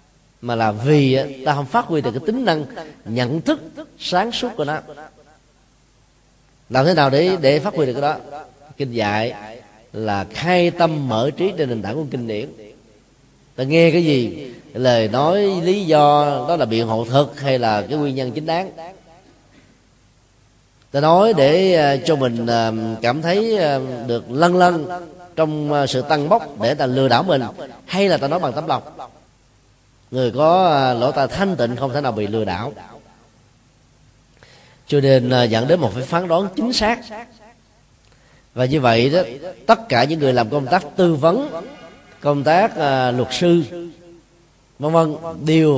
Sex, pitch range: male, 120-165 Hz